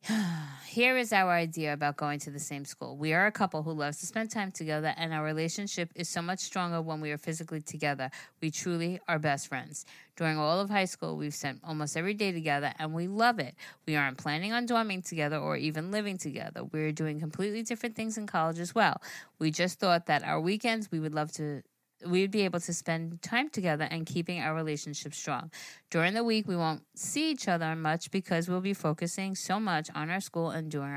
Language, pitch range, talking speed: English, 155-190 Hz, 220 wpm